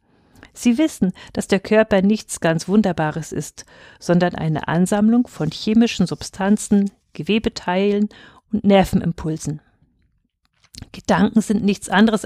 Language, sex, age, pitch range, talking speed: German, female, 50-69, 165-220 Hz, 110 wpm